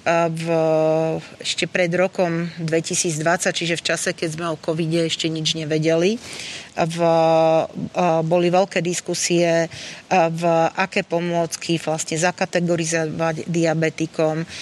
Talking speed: 120 wpm